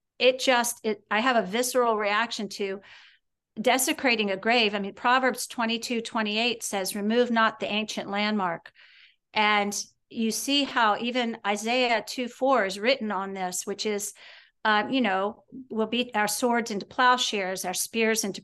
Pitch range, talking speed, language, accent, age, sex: 215-265 Hz, 170 wpm, English, American, 50-69, female